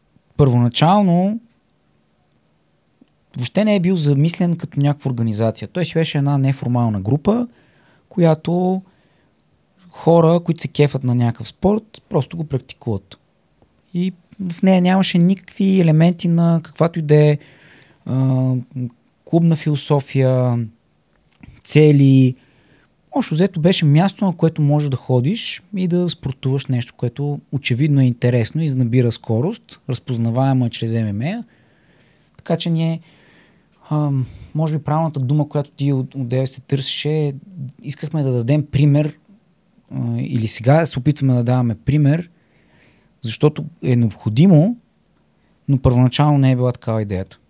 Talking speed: 125 wpm